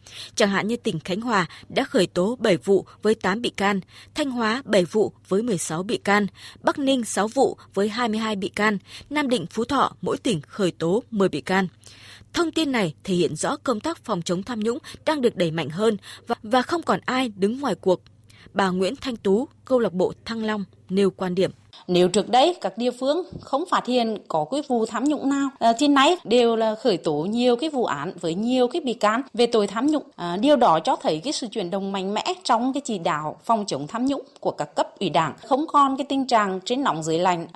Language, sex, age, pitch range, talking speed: Vietnamese, female, 20-39, 190-260 Hz, 230 wpm